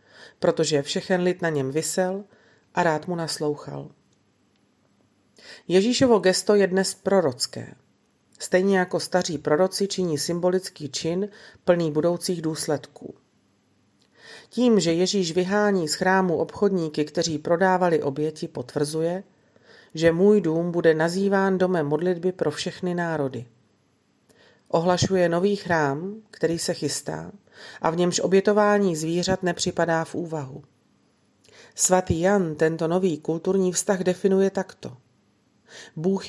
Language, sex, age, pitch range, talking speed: Slovak, female, 40-59, 160-185 Hz, 115 wpm